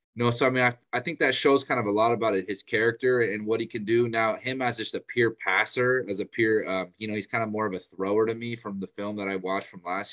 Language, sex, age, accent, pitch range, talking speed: English, male, 20-39, American, 95-115 Hz, 320 wpm